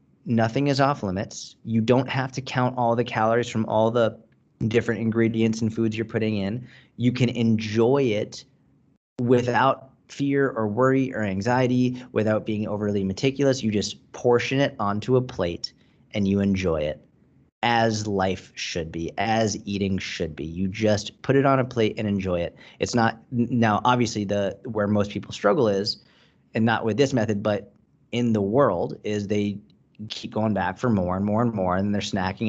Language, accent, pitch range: English, American, 100-120 Hz